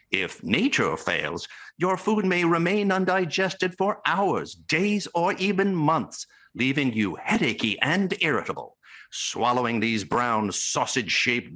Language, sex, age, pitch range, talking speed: English, male, 60-79, 135-225 Hz, 120 wpm